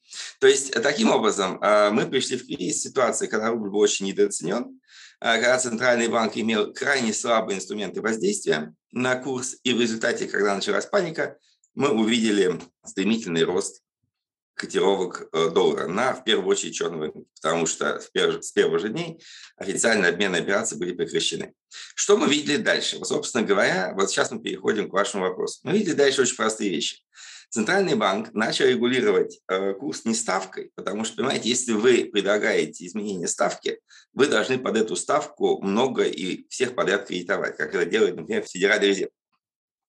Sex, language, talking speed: male, Russian, 155 wpm